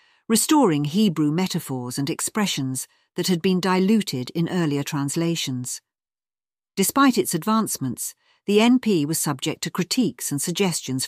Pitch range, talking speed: 145-195 Hz, 125 wpm